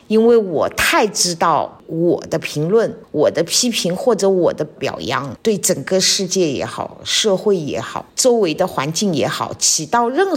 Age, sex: 50-69, female